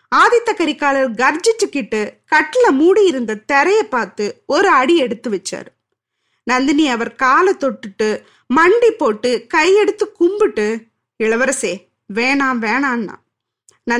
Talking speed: 100 wpm